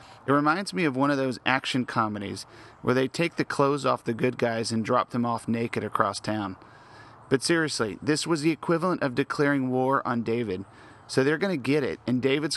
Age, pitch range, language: 40-59, 115-145 Hz, English